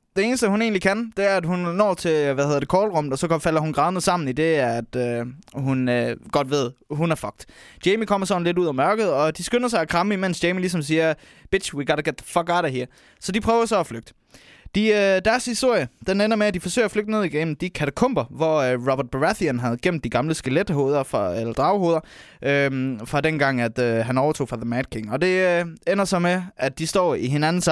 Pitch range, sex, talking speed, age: 140-200 Hz, male, 245 wpm, 20-39